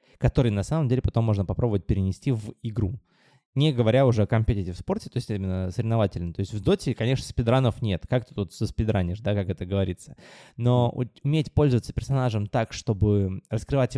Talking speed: 190 wpm